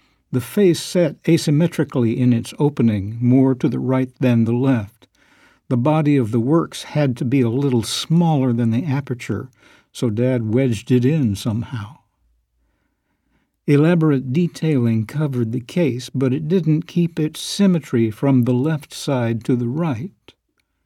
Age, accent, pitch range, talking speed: 60-79, American, 120-160 Hz, 150 wpm